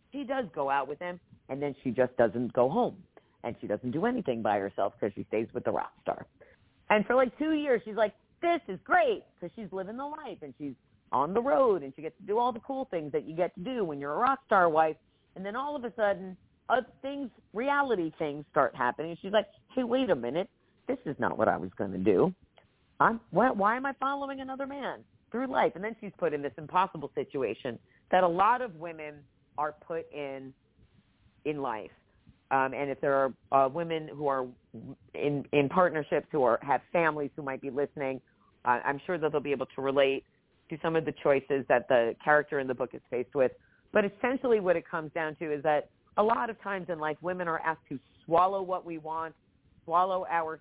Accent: American